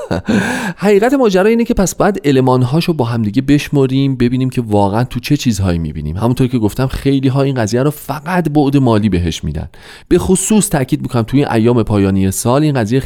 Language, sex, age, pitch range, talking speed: Persian, male, 40-59, 90-135 Hz, 185 wpm